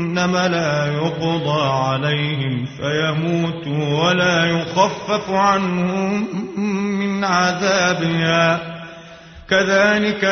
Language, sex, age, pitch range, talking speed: Arabic, male, 30-49, 165-200 Hz, 65 wpm